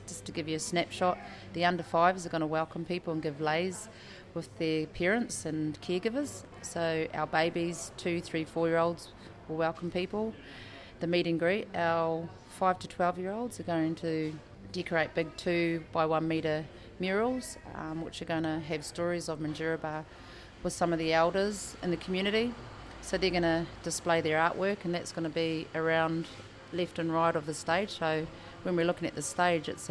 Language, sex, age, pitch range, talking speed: English, female, 30-49, 160-180 Hz, 195 wpm